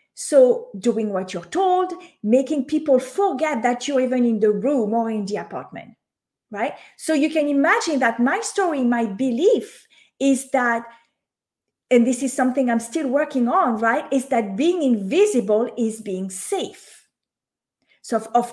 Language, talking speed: English, 155 wpm